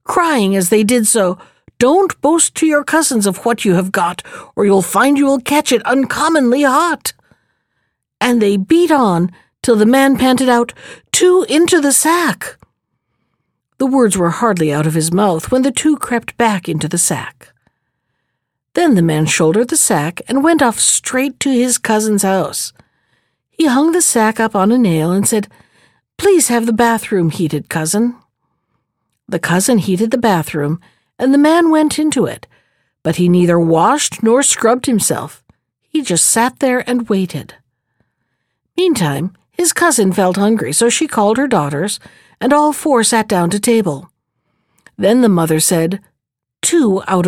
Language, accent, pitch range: English, American, 185-275 Hz